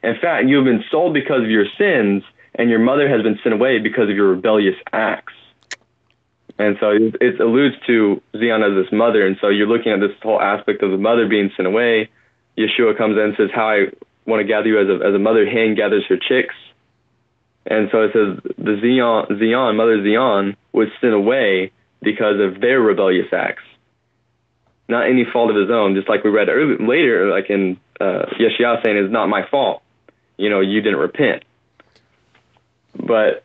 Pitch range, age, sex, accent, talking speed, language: 105-130 Hz, 20-39, male, American, 190 wpm, English